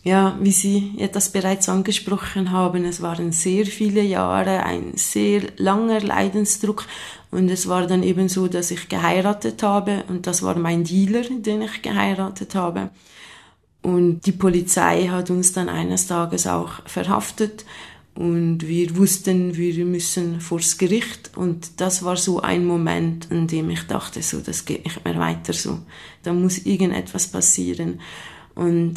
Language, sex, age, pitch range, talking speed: German, female, 20-39, 175-200 Hz, 155 wpm